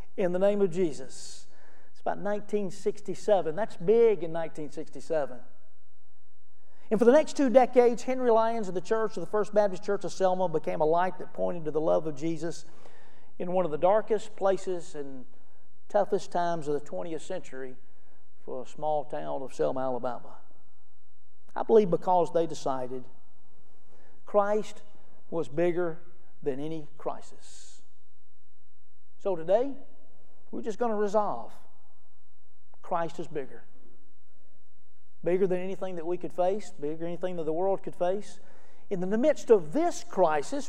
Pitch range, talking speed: 125-200 Hz, 150 wpm